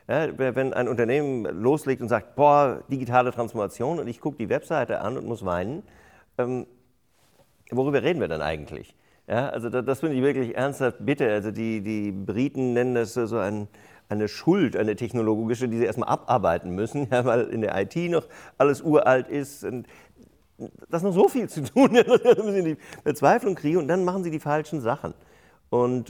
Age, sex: 50-69, male